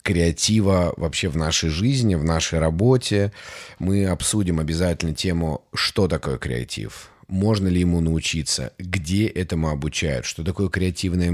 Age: 30-49